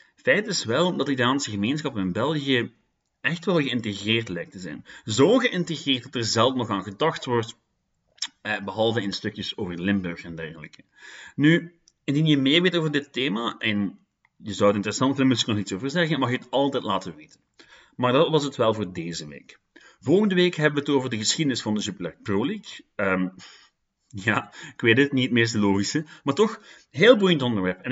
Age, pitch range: 30-49, 105-150 Hz